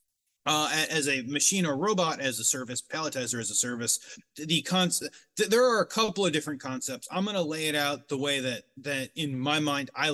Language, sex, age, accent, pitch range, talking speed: English, male, 30-49, American, 140-185 Hz, 215 wpm